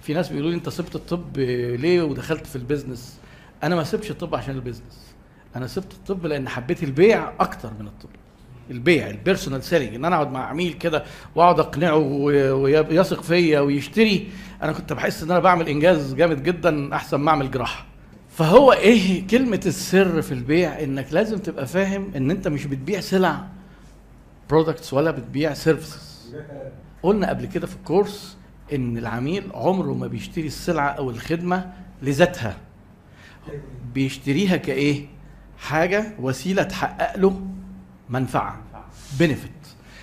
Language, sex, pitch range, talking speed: Arabic, male, 135-180 Hz, 140 wpm